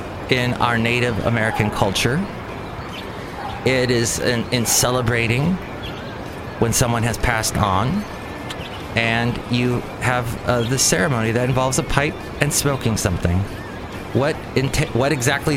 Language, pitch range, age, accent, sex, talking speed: English, 100-135 Hz, 30-49, American, male, 120 wpm